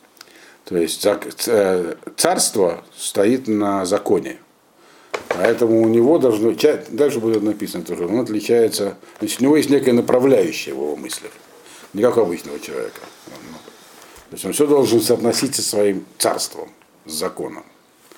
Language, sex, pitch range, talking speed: Russian, male, 105-125 Hz, 130 wpm